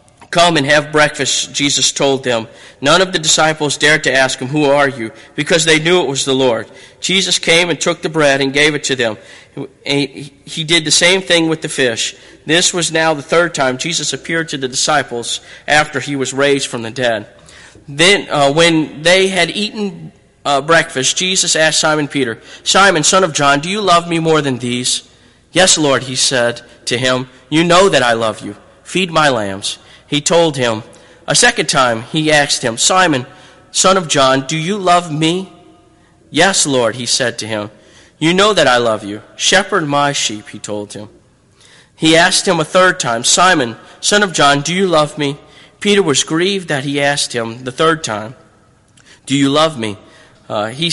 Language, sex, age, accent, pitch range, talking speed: English, male, 40-59, American, 130-170 Hz, 195 wpm